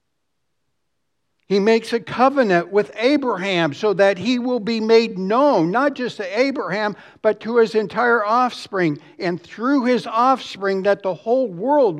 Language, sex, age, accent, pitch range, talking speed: English, male, 60-79, American, 170-215 Hz, 150 wpm